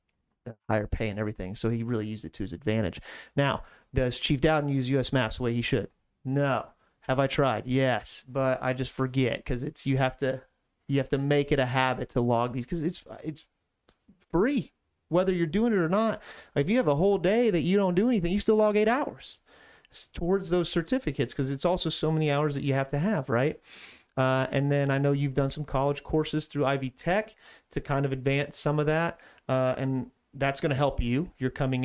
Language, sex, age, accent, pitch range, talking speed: English, male, 30-49, American, 120-150 Hz, 220 wpm